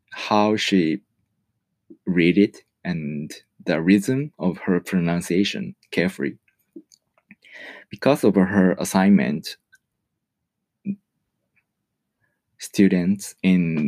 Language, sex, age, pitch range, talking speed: English, male, 20-39, 85-115 Hz, 75 wpm